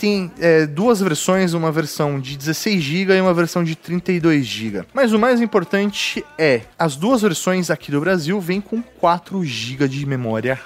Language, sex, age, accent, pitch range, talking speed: Portuguese, male, 20-39, Brazilian, 150-200 Hz, 165 wpm